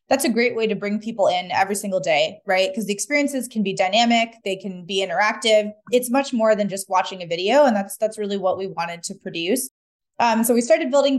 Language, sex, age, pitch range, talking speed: English, female, 20-39, 200-235 Hz, 235 wpm